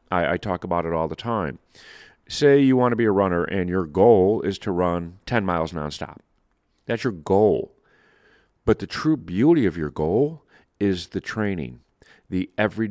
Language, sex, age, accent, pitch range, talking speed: English, male, 40-59, American, 90-120 Hz, 175 wpm